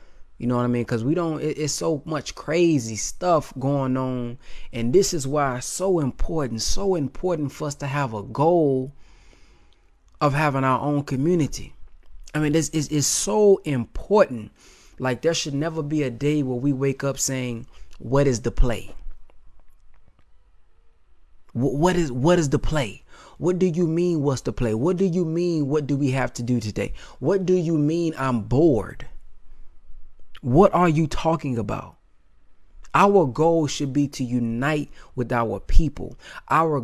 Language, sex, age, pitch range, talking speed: English, male, 20-39, 125-160 Hz, 170 wpm